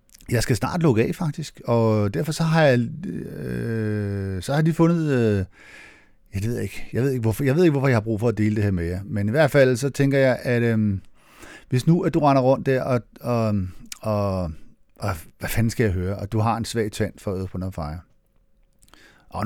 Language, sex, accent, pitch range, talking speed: Danish, male, native, 105-130 Hz, 235 wpm